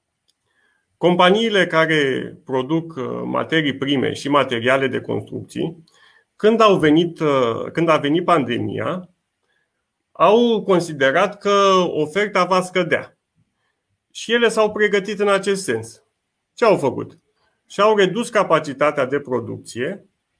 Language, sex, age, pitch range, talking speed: Romanian, male, 30-49, 150-205 Hz, 110 wpm